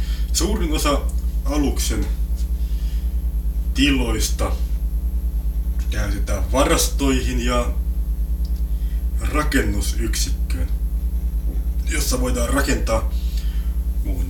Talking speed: 50 wpm